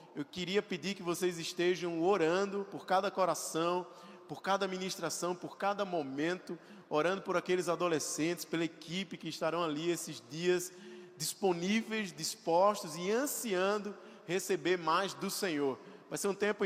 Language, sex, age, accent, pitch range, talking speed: Portuguese, male, 20-39, Brazilian, 160-200 Hz, 140 wpm